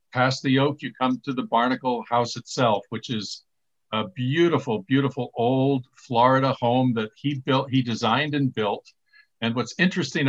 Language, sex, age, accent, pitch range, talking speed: English, male, 50-69, American, 120-140 Hz, 165 wpm